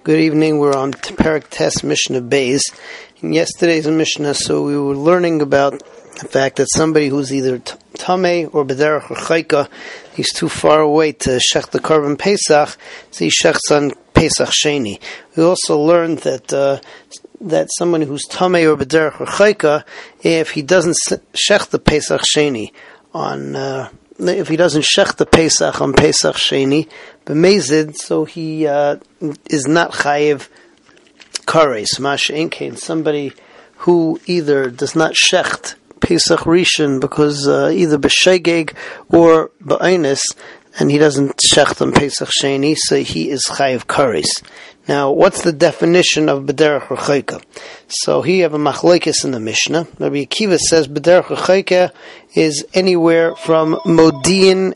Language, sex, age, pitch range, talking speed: English, male, 40-59, 140-165 Hz, 140 wpm